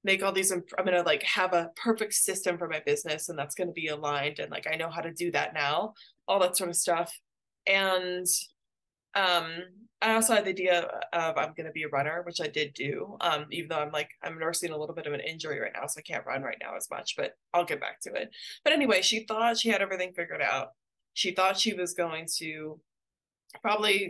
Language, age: English, 20-39